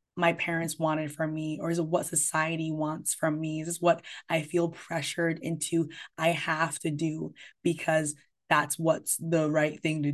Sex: female